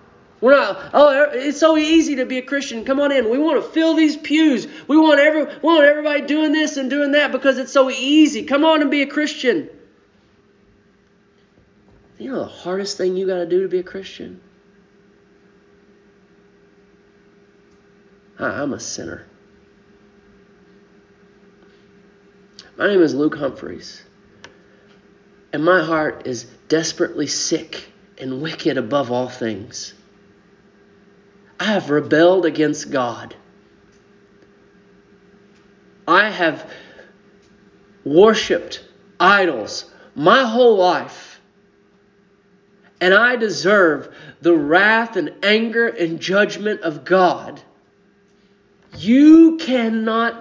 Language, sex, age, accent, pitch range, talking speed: English, male, 30-49, American, 185-265 Hz, 115 wpm